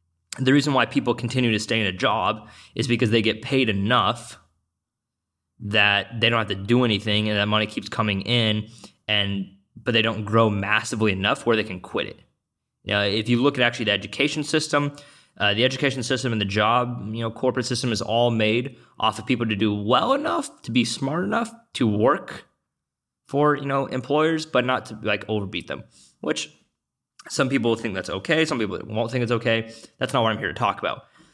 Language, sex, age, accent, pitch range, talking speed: English, male, 20-39, American, 105-130 Hz, 205 wpm